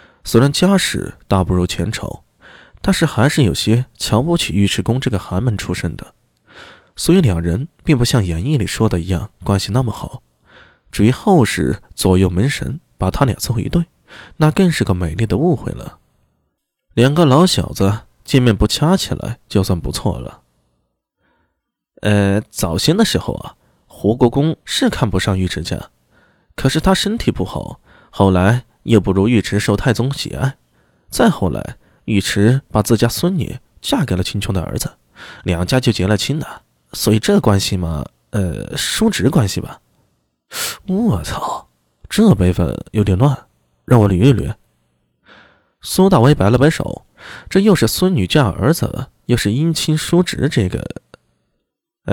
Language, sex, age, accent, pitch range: Chinese, male, 20-39, native, 95-150 Hz